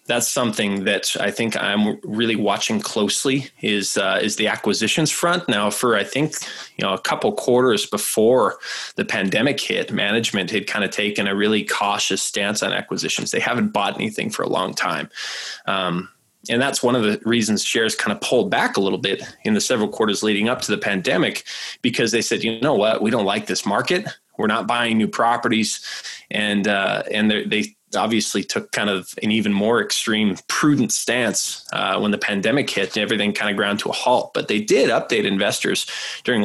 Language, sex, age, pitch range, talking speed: English, male, 20-39, 105-125 Hz, 200 wpm